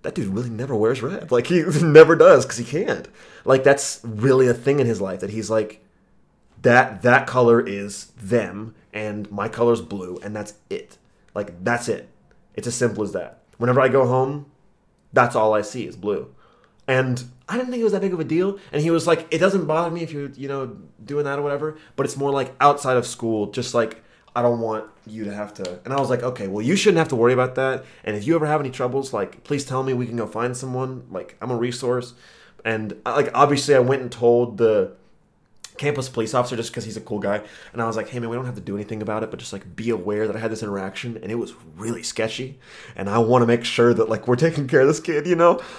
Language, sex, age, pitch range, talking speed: English, male, 20-39, 115-140 Hz, 250 wpm